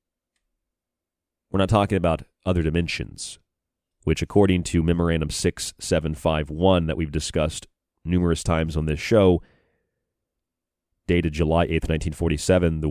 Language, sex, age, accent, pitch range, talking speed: English, male, 40-59, American, 80-90 Hz, 110 wpm